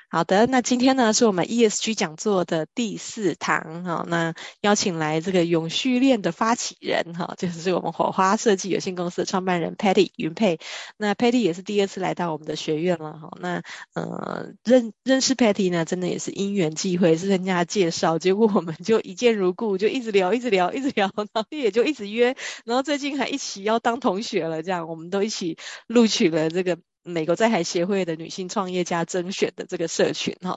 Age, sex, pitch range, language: 20-39, female, 170-220 Hz, Chinese